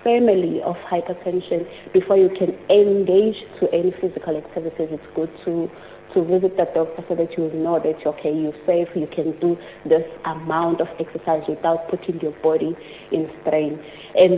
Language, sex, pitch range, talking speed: English, female, 160-195 Hz, 170 wpm